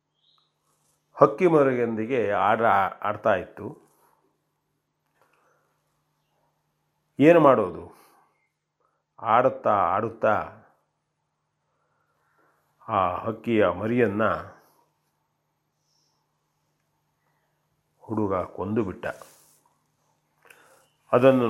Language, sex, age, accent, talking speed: Kannada, male, 40-59, native, 40 wpm